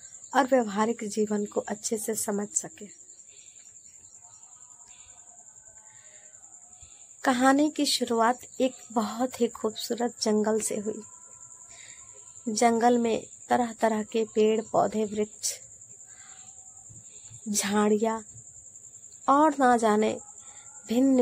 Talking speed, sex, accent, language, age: 90 wpm, female, native, Hindi, 20-39